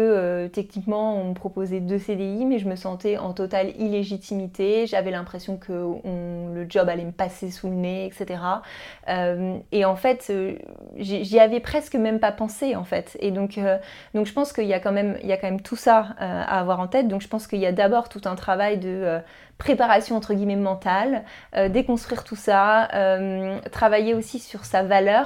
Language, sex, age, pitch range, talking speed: French, female, 20-39, 180-215 Hz, 205 wpm